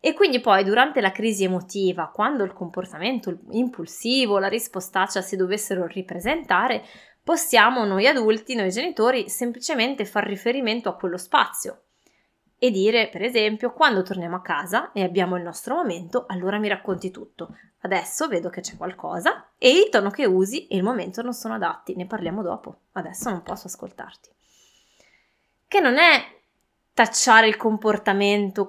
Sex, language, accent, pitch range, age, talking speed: female, Italian, native, 190-240 Hz, 20-39, 155 wpm